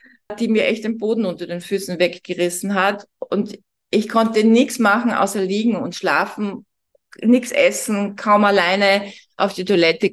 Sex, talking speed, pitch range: female, 155 wpm, 190-230 Hz